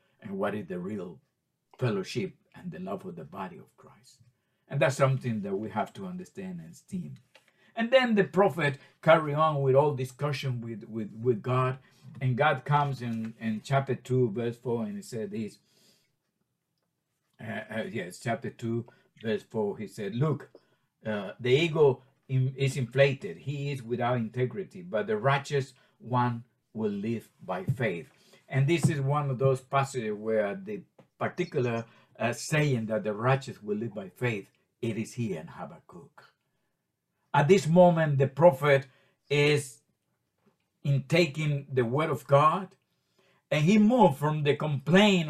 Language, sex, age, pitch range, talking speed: English, male, 50-69, 125-165 Hz, 155 wpm